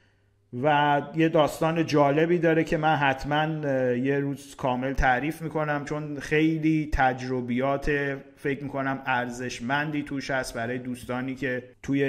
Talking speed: 125 wpm